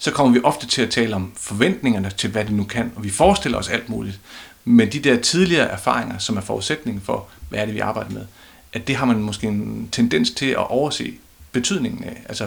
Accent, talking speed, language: native, 230 wpm, Danish